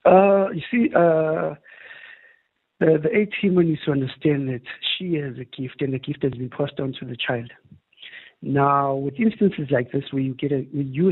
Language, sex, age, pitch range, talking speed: English, male, 60-79, 130-160 Hz, 195 wpm